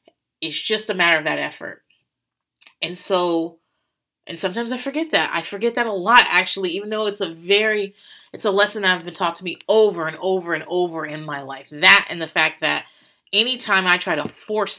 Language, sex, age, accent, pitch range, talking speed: English, female, 30-49, American, 160-215 Hz, 210 wpm